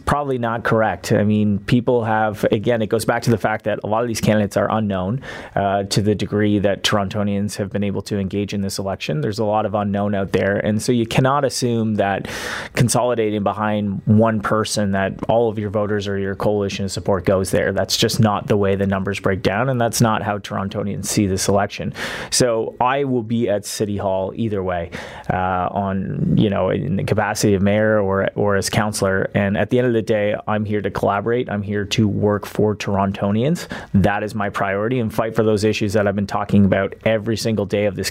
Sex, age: male, 30-49